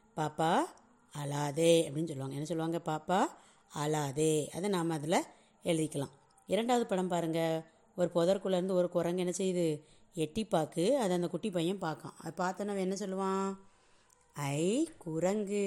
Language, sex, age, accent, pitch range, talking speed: Tamil, female, 30-49, native, 155-185 Hz, 135 wpm